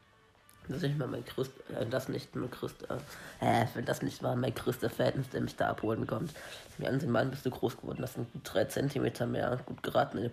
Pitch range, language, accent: 115-140 Hz, German, German